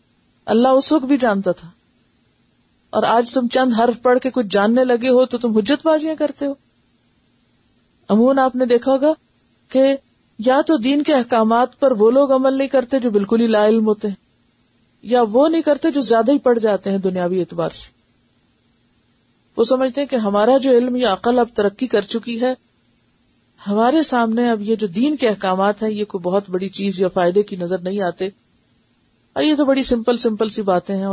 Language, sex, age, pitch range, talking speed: Urdu, female, 40-59, 185-250 Hz, 195 wpm